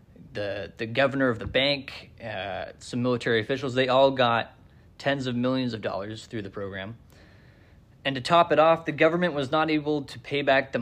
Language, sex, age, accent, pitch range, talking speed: English, male, 20-39, American, 110-145 Hz, 195 wpm